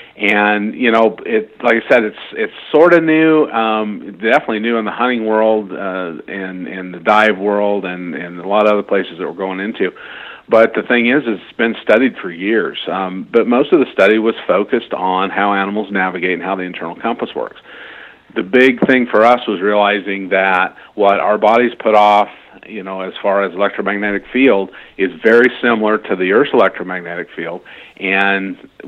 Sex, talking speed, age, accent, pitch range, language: male, 190 wpm, 50-69, American, 95-110 Hz, English